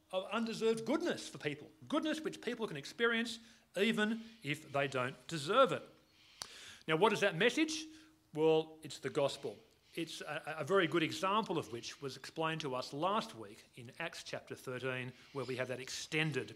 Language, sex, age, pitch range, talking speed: English, male, 40-59, 135-215 Hz, 175 wpm